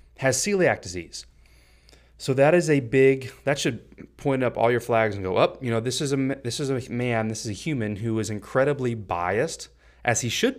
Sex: male